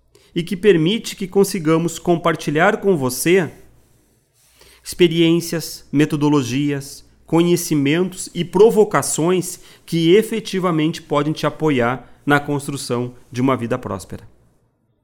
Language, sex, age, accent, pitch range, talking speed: Portuguese, male, 40-59, Brazilian, 120-160 Hz, 95 wpm